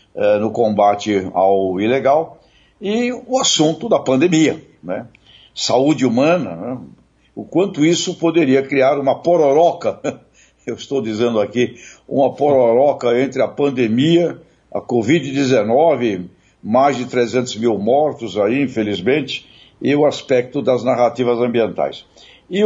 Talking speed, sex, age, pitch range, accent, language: 120 wpm, male, 60-79, 120-160 Hz, Brazilian, Portuguese